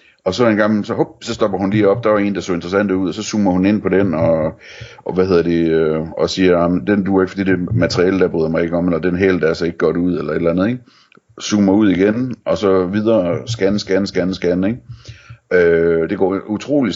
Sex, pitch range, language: male, 85-105 Hz, Danish